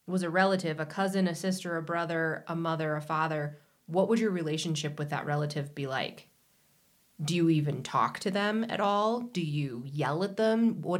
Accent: American